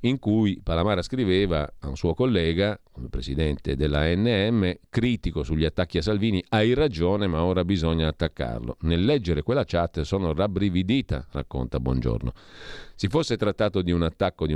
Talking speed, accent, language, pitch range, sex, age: 155 wpm, native, Italian, 80-105 Hz, male, 40-59